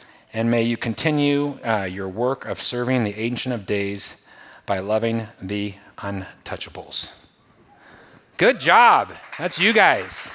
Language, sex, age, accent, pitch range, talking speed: English, male, 30-49, American, 115-160 Hz, 130 wpm